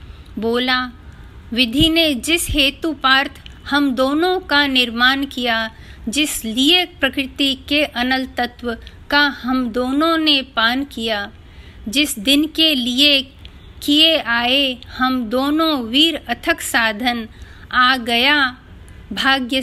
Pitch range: 220-270 Hz